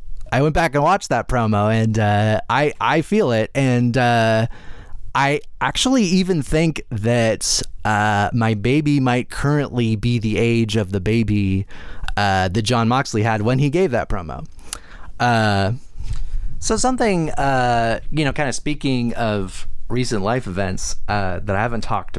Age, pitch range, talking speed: 30-49, 95-130 Hz, 160 wpm